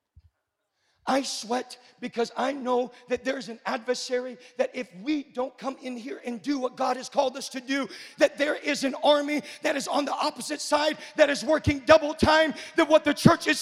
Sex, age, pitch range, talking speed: male, 40-59, 250-340 Hz, 205 wpm